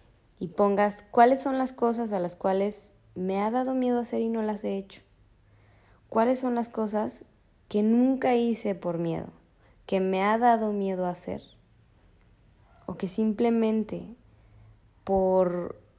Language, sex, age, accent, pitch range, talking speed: Spanish, female, 20-39, Mexican, 180-215 Hz, 150 wpm